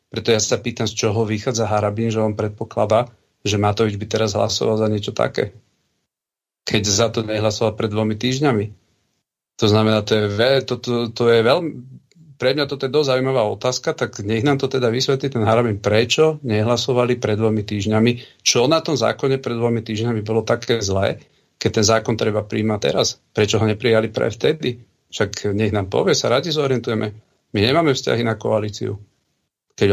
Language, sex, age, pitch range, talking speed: Slovak, male, 40-59, 105-125 Hz, 180 wpm